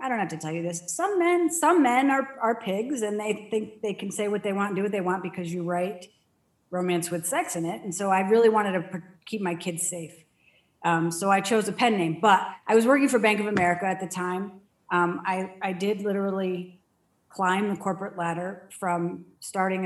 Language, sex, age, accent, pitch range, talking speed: English, female, 40-59, American, 175-195 Hz, 225 wpm